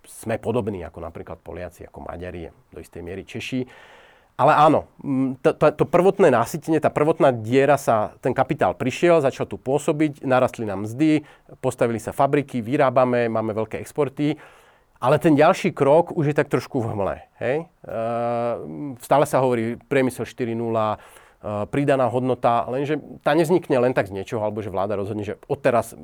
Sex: male